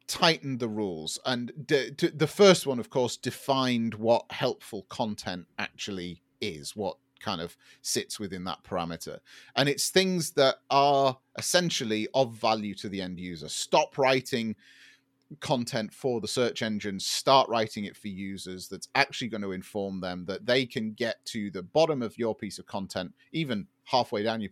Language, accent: English, British